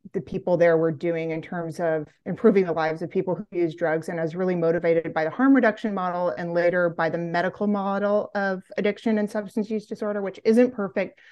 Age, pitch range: 30-49, 170-200 Hz